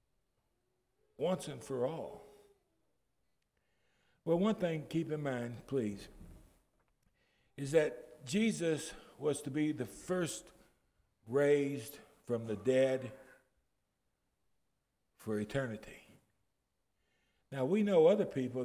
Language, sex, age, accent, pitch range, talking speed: English, male, 60-79, American, 125-160 Hz, 100 wpm